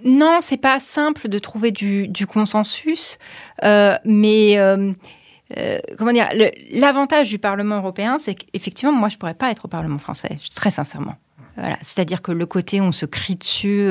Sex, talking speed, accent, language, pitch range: female, 185 wpm, French, French, 170-225 Hz